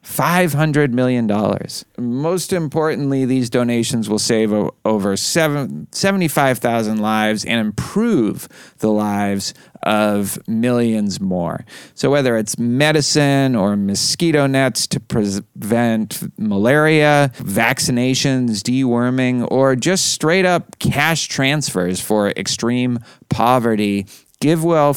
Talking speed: 90 wpm